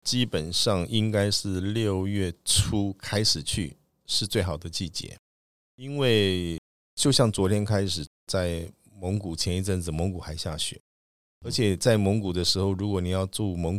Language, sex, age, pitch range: Chinese, male, 50-69, 85-100 Hz